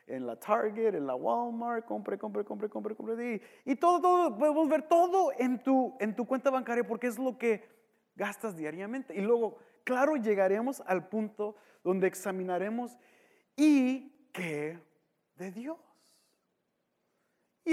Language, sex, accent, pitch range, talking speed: English, male, Mexican, 160-225 Hz, 145 wpm